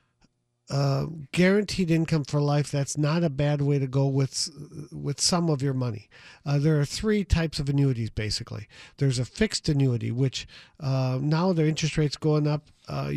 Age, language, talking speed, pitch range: 50-69, English, 180 wpm, 130-155 Hz